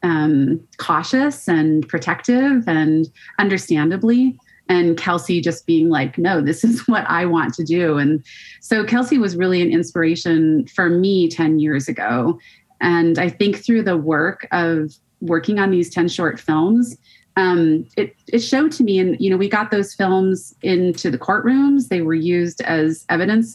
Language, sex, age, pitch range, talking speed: English, female, 30-49, 165-200 Hz, 165 wpm